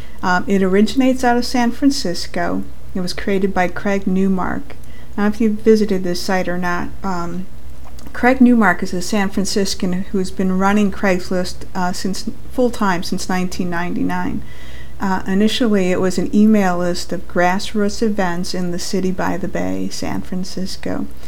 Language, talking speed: English, 165 wpm